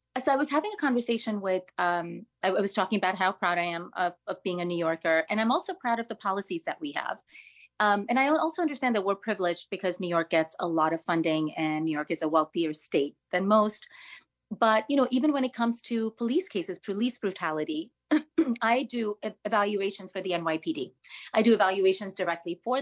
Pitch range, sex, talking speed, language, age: 175-235 Hz, female, 215 wpm, English, 30-49